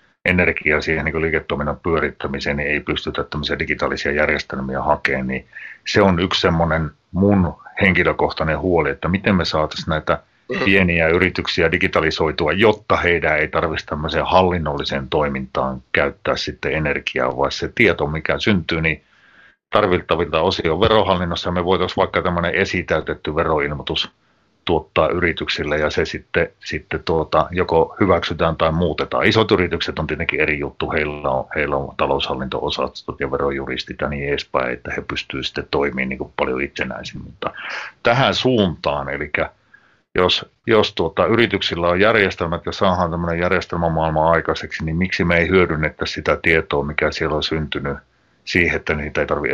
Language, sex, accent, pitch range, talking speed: Finnish, male, native, 70-90 Hz, 145 wpm